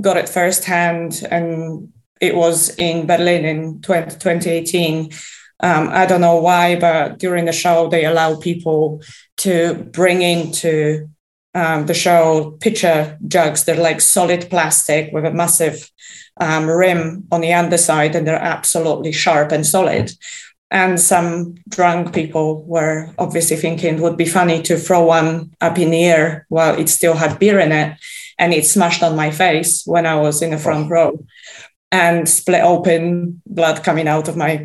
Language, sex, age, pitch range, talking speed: English, female, 20-39, 160-180 Hz, 165 wpm